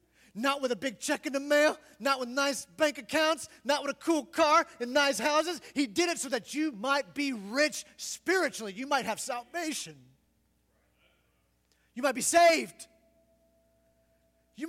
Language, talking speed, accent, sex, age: English, 165 wpm, American, male, 30-49